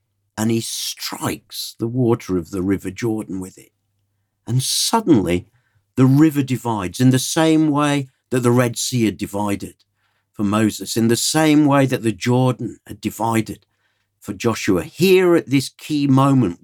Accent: British